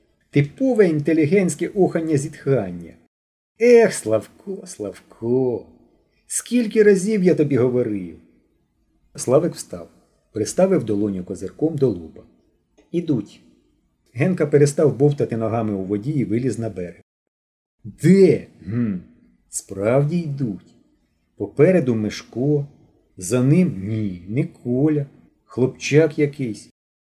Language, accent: Ukrainian, native